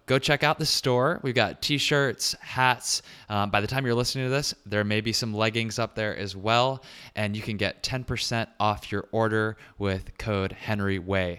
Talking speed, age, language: 195 wpm, 20-39, English